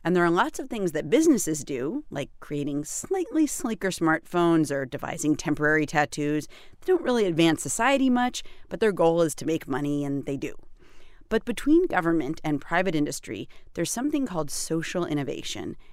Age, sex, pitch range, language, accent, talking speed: 40-59, female, 150-200 Hz, English, American, 170 wpm